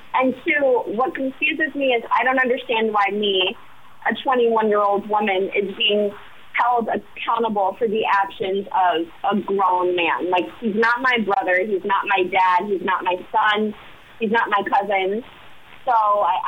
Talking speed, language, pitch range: 160 wpm, English, 195-245 Hz